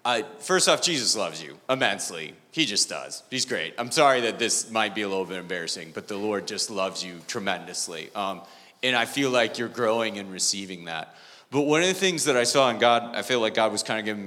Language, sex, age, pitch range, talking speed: English, male, 30-49, 100-125 Hz, 235 wpm